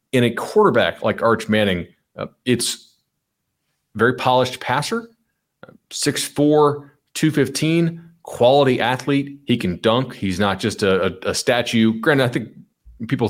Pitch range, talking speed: 100-135 Hz, 130 wpm